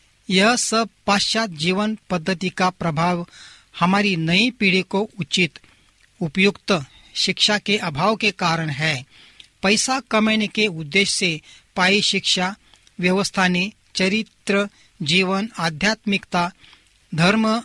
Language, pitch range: Hindi, 170-210 Hz